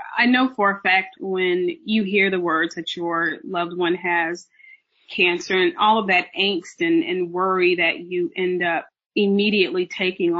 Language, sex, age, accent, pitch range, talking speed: English, female, 30-49, American, 175-235 Hz, 175 wpm